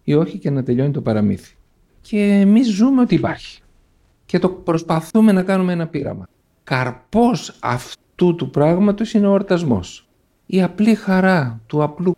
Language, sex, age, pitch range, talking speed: English, male, 50-69, 115-170 Hz, 155 wpm